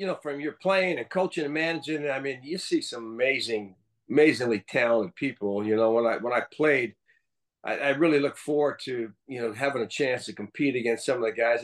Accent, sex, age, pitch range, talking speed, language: American, male, 50-69, 120-155 Hz, 220 wpm, English